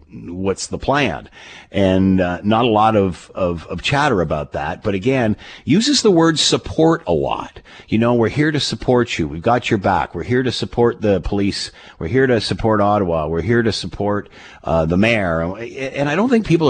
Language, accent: English, American